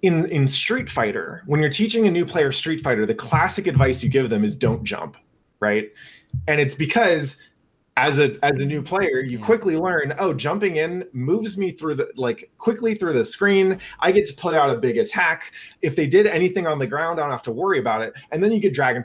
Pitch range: 135-195 Hz